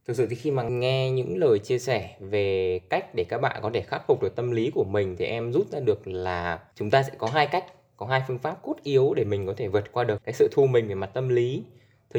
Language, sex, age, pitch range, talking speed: Vietnamese, male, 10-29, 105-150 Hz, 285 wpm